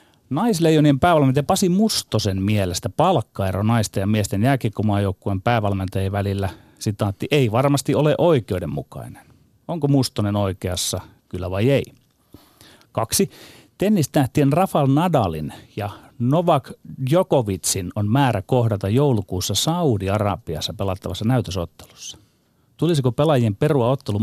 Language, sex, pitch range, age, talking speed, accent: Finnish, male, 105-140 Hz, 30-49, 100 wpm, native